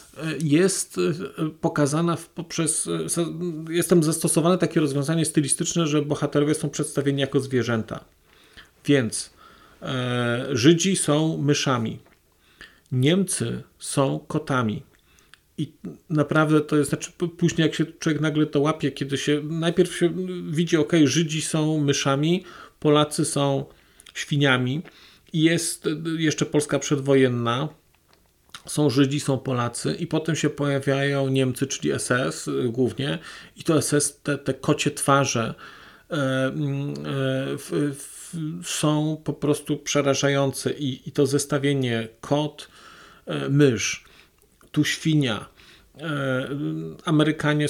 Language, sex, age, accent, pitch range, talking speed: Polish, male, 40-59, native, 135-160 Hz, 105 wpm